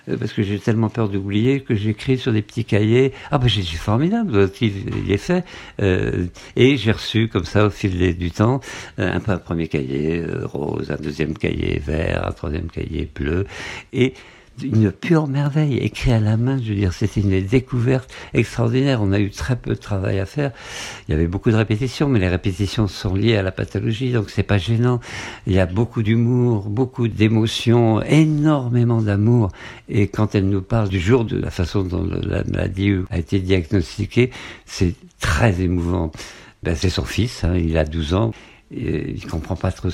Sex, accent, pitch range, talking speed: male, French, 95-120 Hz, 195 wpm